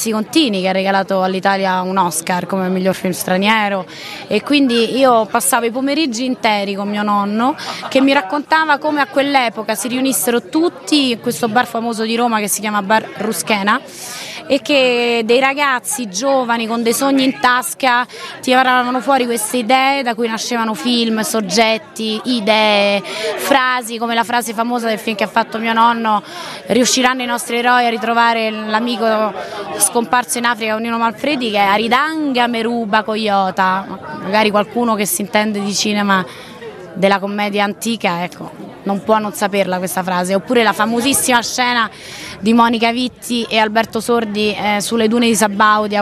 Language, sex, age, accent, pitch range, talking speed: Italian, female, 20-39, native, 205-245 Hz, 160 wpm